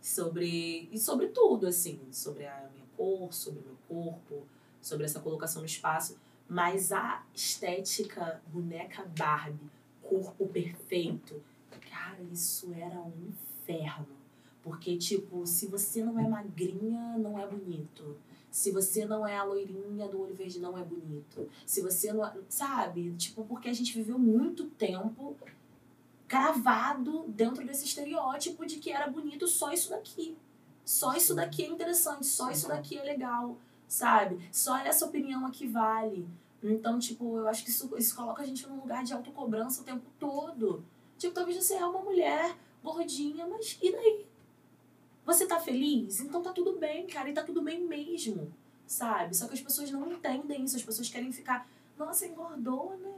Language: Portuguese